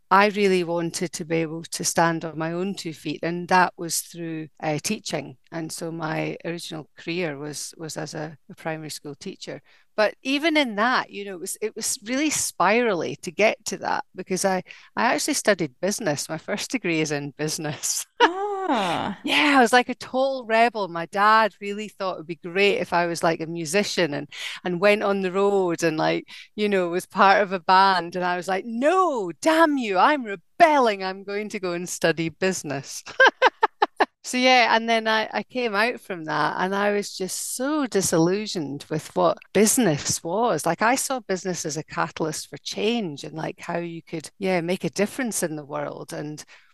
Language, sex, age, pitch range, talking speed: English, female, 40-59, 155-210 Hz, 195 wpm